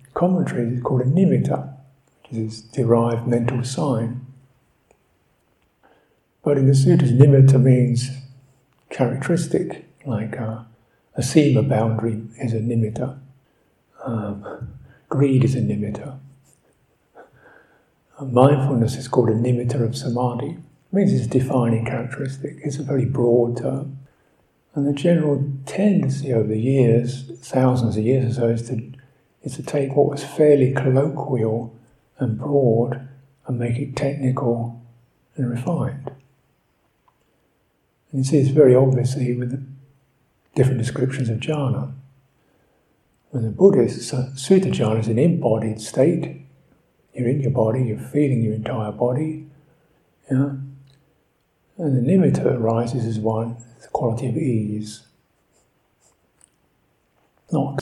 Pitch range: 120-140 Hz